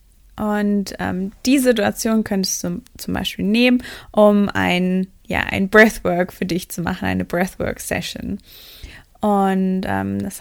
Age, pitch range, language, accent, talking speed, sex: 20-39, 185-215 Hz, German, German, 135 wpm, female